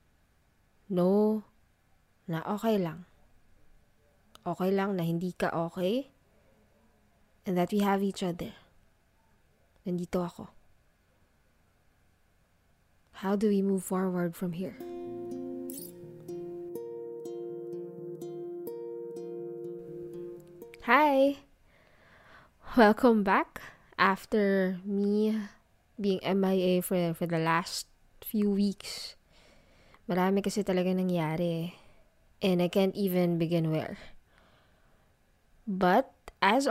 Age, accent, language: 20-39, native, Filipino